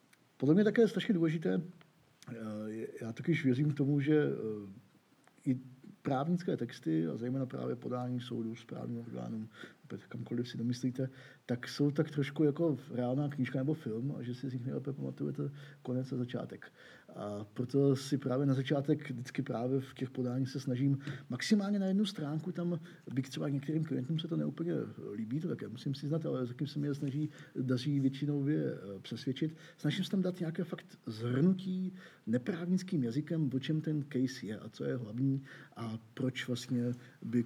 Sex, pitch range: male, 120-155 Hz